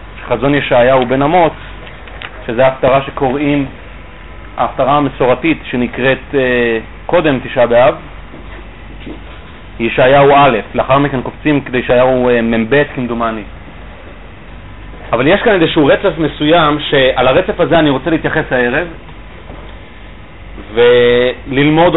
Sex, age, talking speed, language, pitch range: male, 30-49, 100 wpm, Hebrew, 120-155 Hz